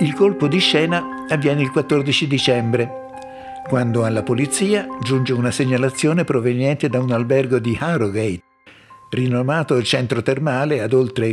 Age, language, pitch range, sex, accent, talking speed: 60-79, Italian, 115-150 Hz, male, native, 130 wpm